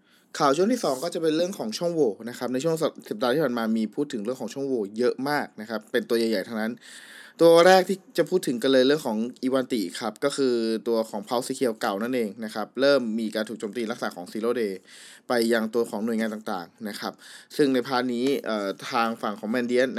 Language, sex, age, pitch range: Thai, male, 20-39, 110-135 Hz